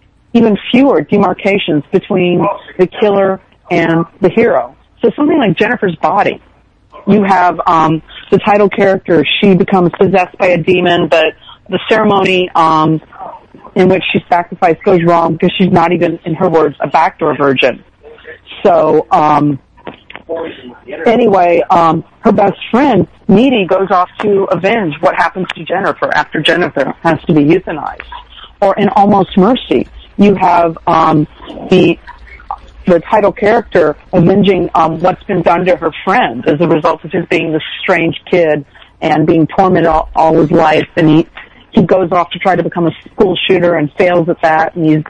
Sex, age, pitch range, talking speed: female, 40-59, 165-200 Hz, 160 wpm